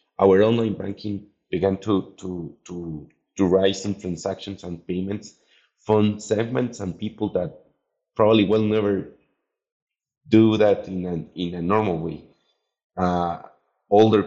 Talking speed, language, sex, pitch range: 130 wpm, English, male, 95-110 Hz